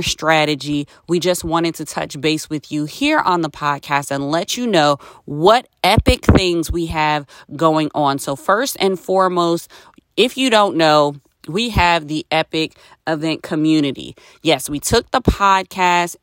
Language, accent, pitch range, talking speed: English, American, 145-180 Hz, 160 wpm